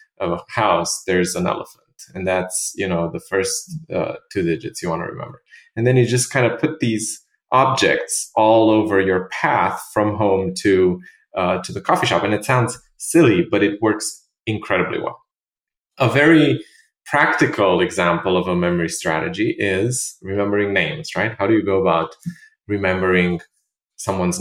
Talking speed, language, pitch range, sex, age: 165 wpm, English, 95-125 Hz, male, 20-39